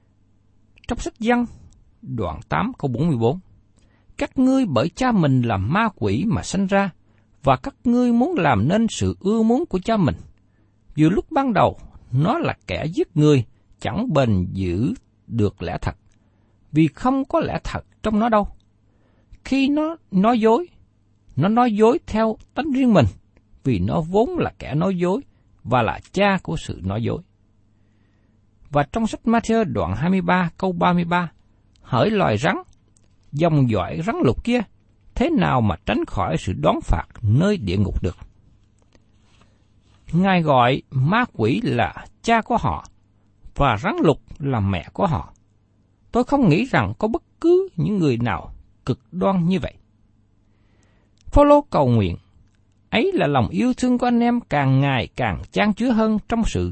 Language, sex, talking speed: Vietnamese, male, 165 wpm